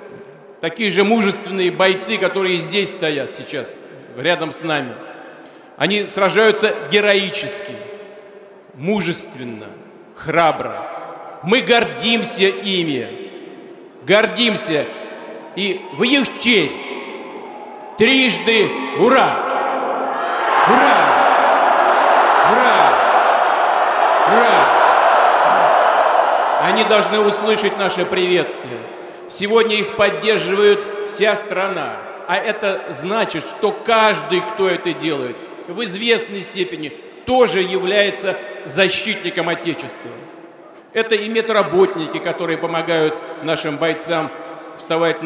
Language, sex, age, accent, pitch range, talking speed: Russian, male, 40-59, native, 180-215 Hz, 85 wpm